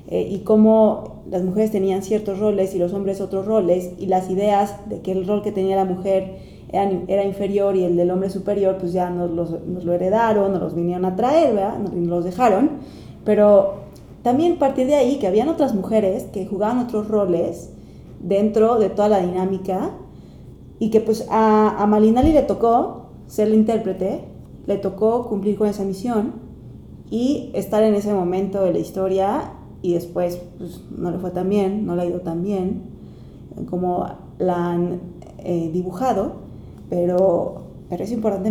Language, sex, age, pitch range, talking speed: Spanish, female, 20-39, 185-215 Hz, 180 wpm